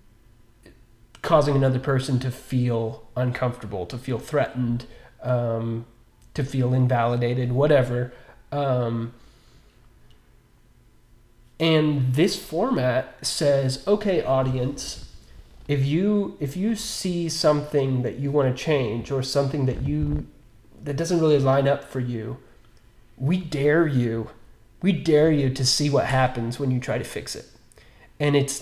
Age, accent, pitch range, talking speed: 30-49, American, 120-145 Hz, 130 wpm